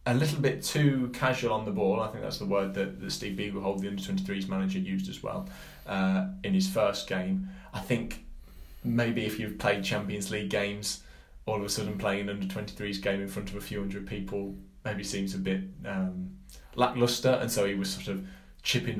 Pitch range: 95-125 Hz